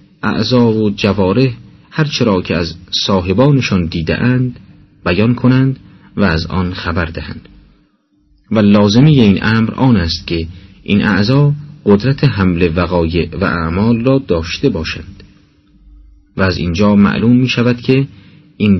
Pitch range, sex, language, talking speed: 90-125 Hz, male, Persian, 130 wpm